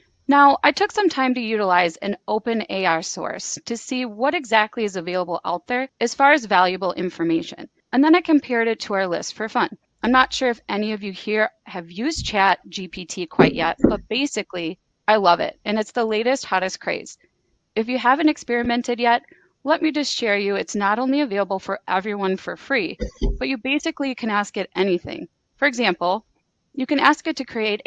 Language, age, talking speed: English, 30-49, 200 wpm